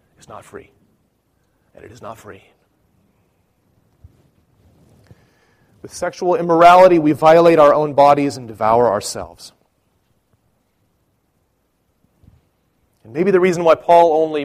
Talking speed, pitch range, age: 110 wpm, 135-185 Hz, 30-49